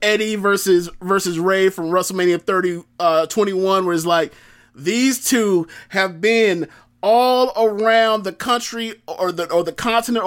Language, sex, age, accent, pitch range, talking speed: English, male, 30-49, American, 170-215 Hz, 145 wpm